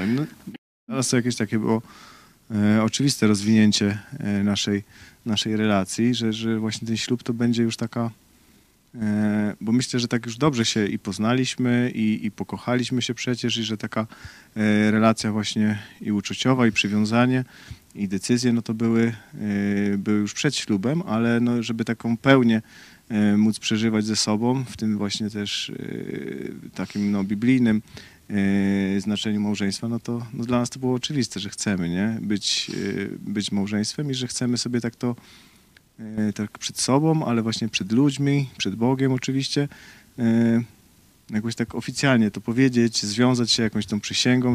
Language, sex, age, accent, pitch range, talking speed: Polish, male, 40-59, native, 105-120 Hz, 165 wpm